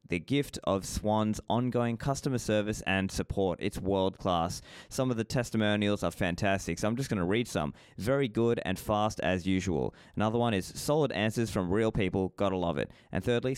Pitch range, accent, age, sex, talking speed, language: 95-120 Hz, Australian, 20-39, male, 190 wpm, English